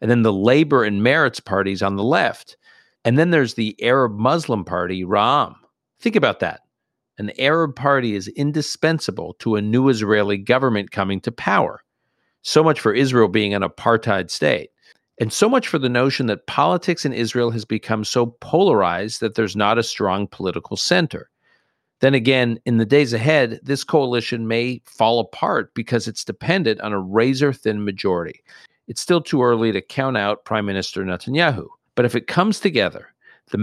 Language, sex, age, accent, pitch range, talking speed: English, male, 50-69, American, 105-135 Hz, 175 wpm